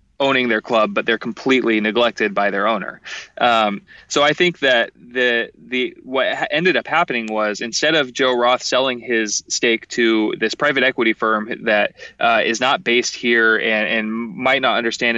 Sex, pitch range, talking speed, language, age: male, 105-125 Hz, 180 wpm, English, 20-39